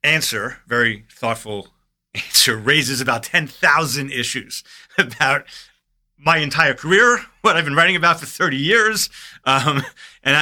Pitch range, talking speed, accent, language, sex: 105-145 Hz, 125 wpm, American, English, male